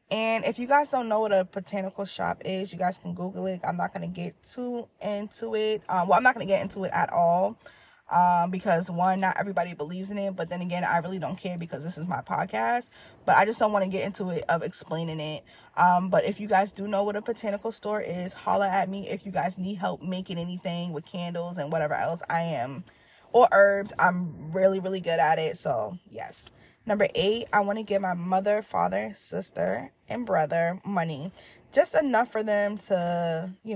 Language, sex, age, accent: English, female, 20-39, American